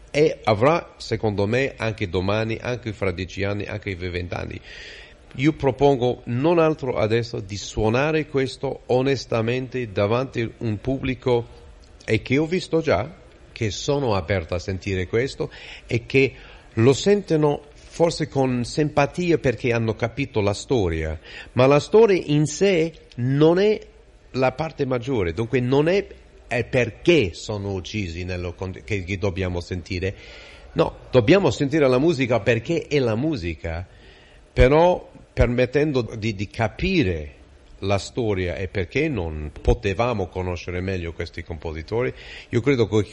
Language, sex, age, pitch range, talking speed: Italian, male, 40-59, 95-130 Hz, 135 wpm